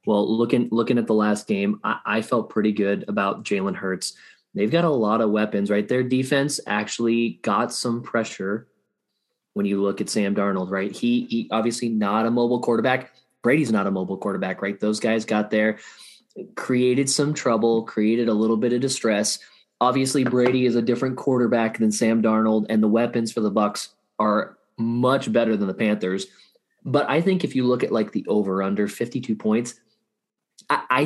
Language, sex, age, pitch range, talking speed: English, male, 20-39, 110-125 Hz, 185 wpm